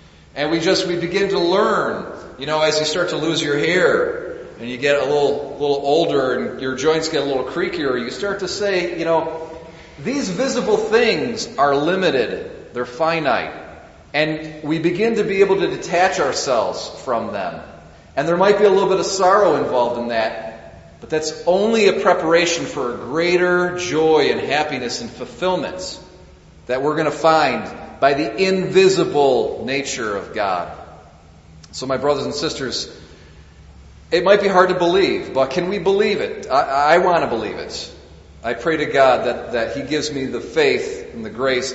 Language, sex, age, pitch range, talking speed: English, male, 40-59, 130-190 Hz, 180 wpm